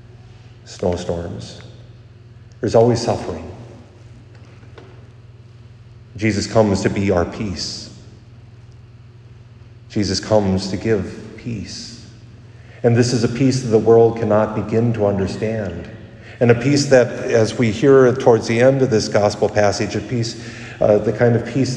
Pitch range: 110-120 Hz